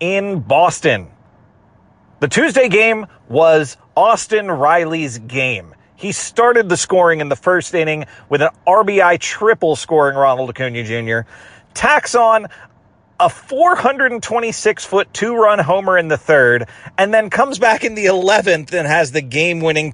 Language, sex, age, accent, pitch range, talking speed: English, male, 30-49, American, 125-175 Hz, 135 wpm